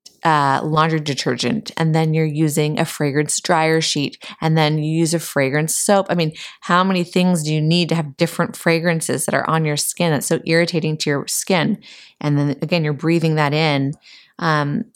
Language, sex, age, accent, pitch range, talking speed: English, female, 20-39, American, 150-175 Hz, 195 wpm